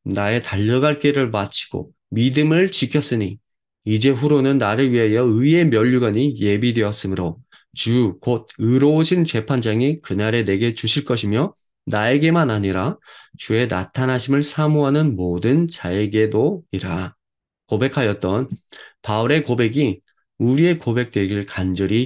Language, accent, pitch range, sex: Korean, native, 110-145 Hz, male